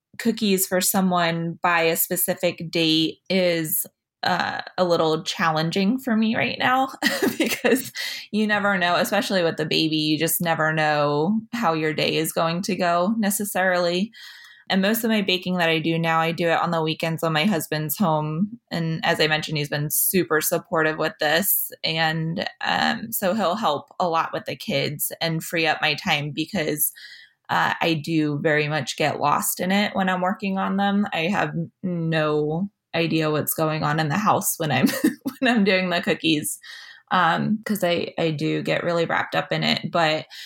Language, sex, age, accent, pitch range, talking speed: English, female, 20-39, American, 160-190 Hz, 185 wpm